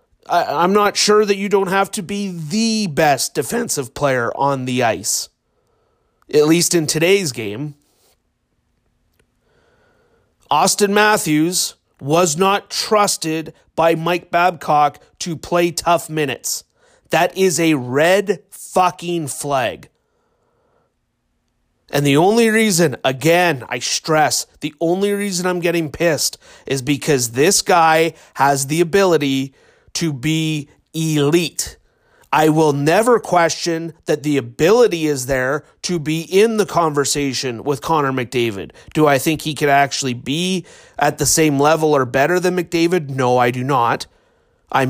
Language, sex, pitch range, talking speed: English, male, 140-180 Hz, 135 wpm